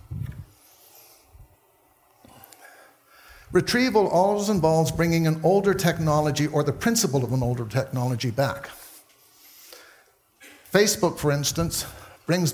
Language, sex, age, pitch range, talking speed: English, male, 60-79, 130-170 Hz, 90 wpm